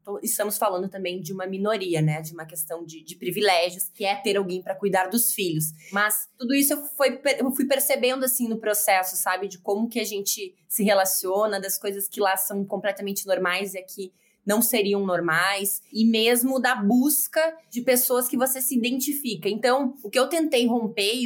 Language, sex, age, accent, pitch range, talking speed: Portuguese, female, 20-39, Brazilian, 185-240 Hz, 190 wpm